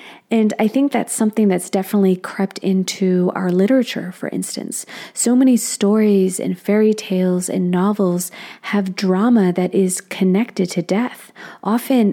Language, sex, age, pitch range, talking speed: English, female, 30-49, 185-230 Hz, 145 wpm